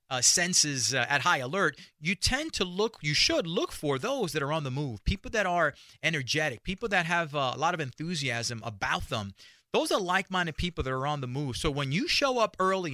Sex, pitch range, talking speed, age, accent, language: male, 150-210 Hz, 225 wpm, 30-49, American, English